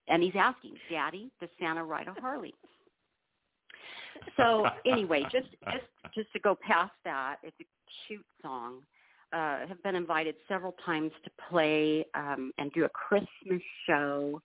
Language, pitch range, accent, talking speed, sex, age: English, 145-180 Hz, American, 150 wpm, female, 50-69